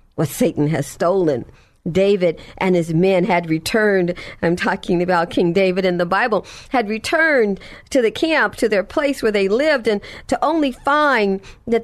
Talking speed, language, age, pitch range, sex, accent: 170 wpm, English, 50-69, 180-275 Hz, female, American